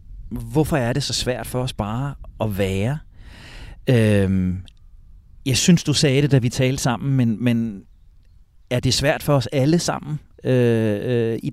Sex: male